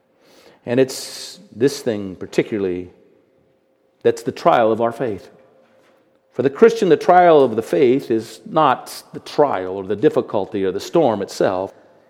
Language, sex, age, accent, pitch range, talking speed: English, male, 40-59, American, 115-155 Hz, 150 wpm